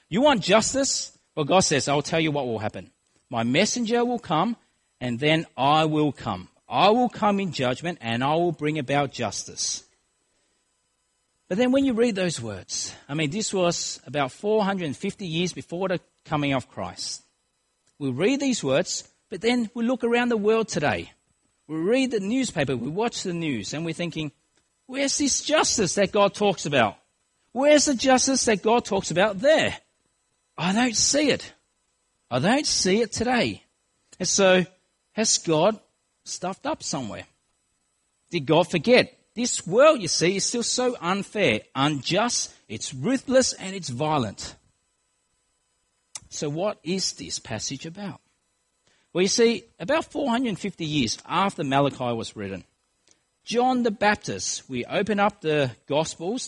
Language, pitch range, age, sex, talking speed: English, 145-230 Hz, 40-59, male, 155 wpm